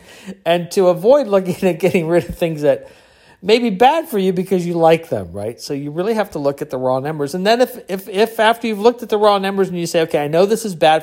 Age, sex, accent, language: 50-69, male, American, English